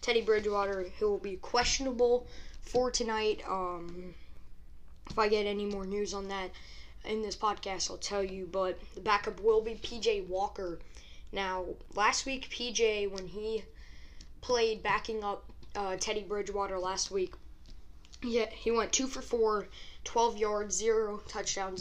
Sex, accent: female, American